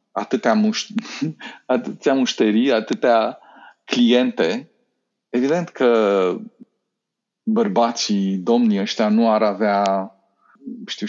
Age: 40-59